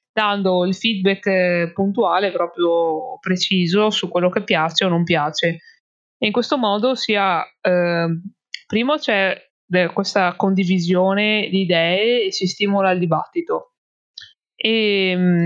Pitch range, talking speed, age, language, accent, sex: 175-200 Hz, 125 wpm, 20-39, Italian, native, female